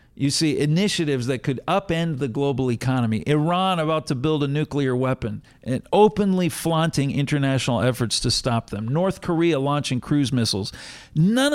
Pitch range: 130-180 Hz